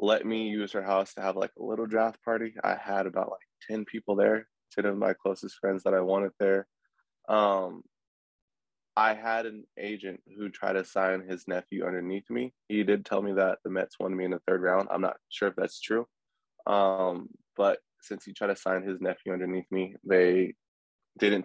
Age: 20-39